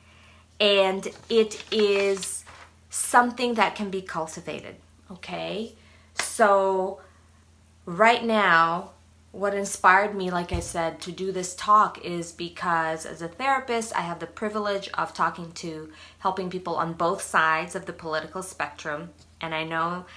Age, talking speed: 30-49, 135 wpm